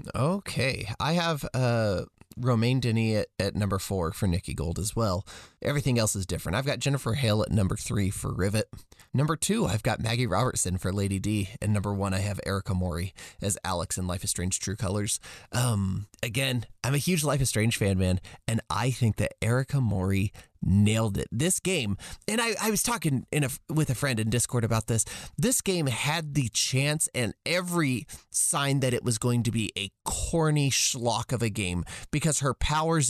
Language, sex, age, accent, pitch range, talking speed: English, male, 20-39, American, 100-140 Hz, 200 wpm